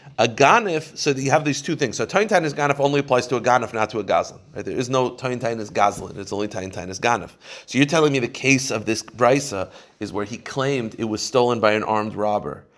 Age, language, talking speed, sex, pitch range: 30-49, English, 240 wpm, male, 110-135 Hz